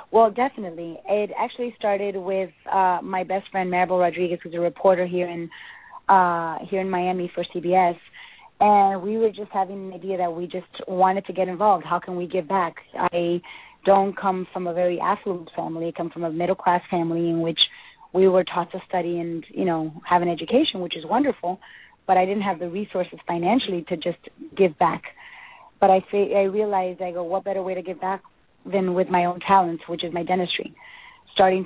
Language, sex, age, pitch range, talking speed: English, female, 30-49, 175-195 Hz, 200 wpm